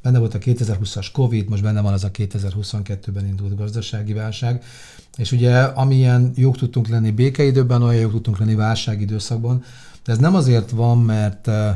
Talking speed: 165 wpm